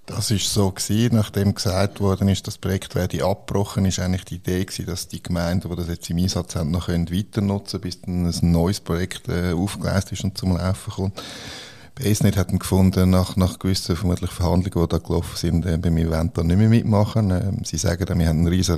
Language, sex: German, male